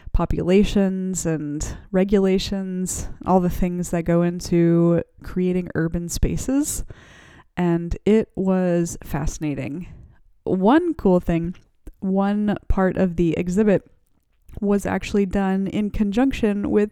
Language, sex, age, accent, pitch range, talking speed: English, female, 20-39, American, 180-220 Hz, 105 wpm